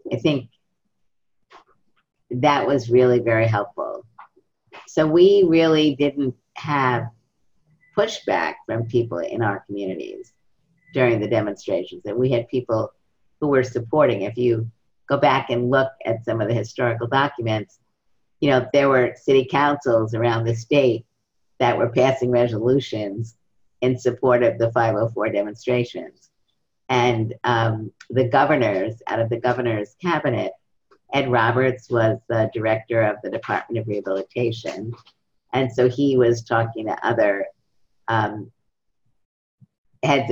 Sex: female